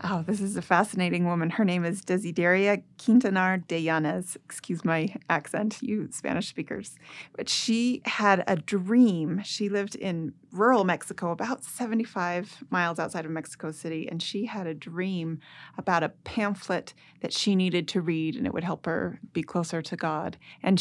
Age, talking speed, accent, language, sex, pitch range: 30-49, 170 wpm, American, English, female, 170-210 Hz